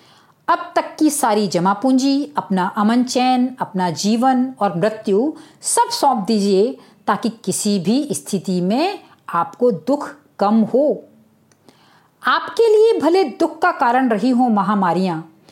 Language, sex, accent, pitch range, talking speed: Hindi, female, native, 210-310 Hz, 130 wpm